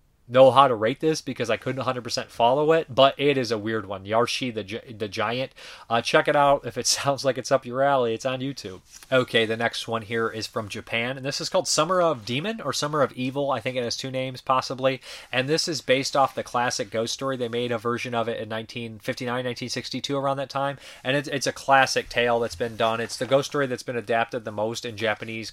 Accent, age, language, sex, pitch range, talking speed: American, 30-49, English, male, 115-130 Hz, 245 wpm